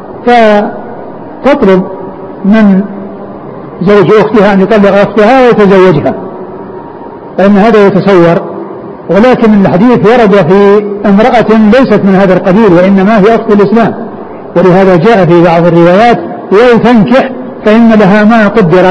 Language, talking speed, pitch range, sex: Arabic, 110 wpm, 185-225 Hz, male